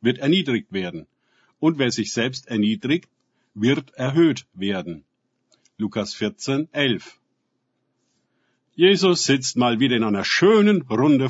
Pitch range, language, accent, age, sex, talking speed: 115-155 Hz, German, German, 50-69, male, 115 wpm